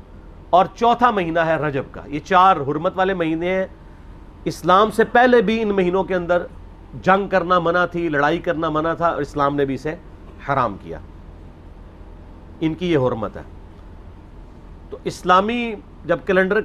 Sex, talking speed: male, 155 wpm